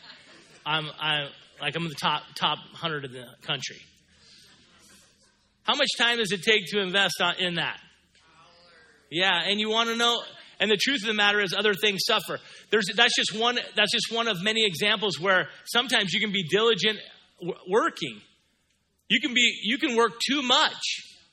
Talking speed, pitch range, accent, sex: 175 wpm, 145-215 Hz, American, male